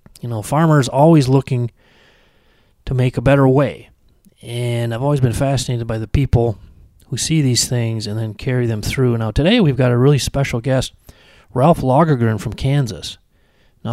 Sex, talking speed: male, 170 wpm